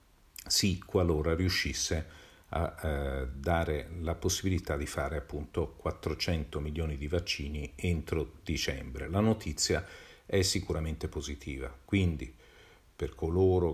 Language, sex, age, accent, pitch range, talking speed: Italian, male, 50-69, native, 75-95 Hz, 110 wpm